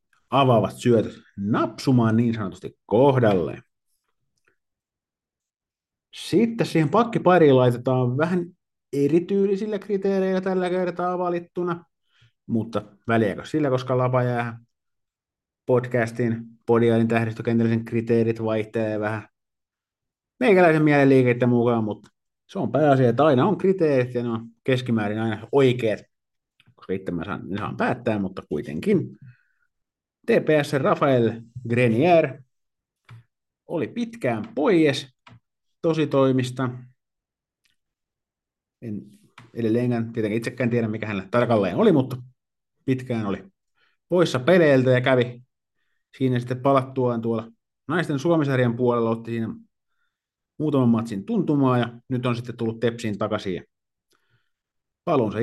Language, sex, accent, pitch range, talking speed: Finnish, male, native, 115-145 Hz, 105 wpm